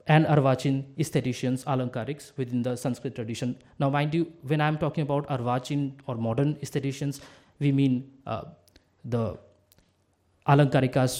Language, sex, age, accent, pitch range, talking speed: English, male, 20-39, Indian, 120-155 Hz, 130 wpm